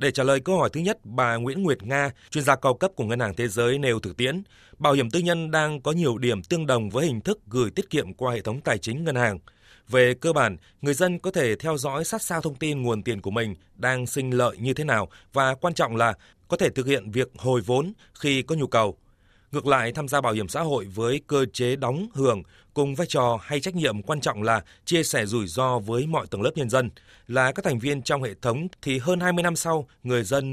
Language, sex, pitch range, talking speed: Vietnamese, male, 115-150 Hz, 255 wpm